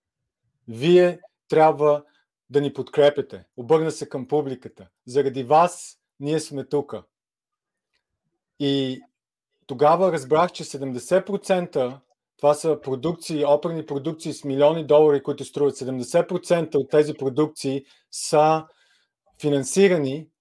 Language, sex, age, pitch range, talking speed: Bulgarian, male, 40-59, 135-160 Hz, 105 wpm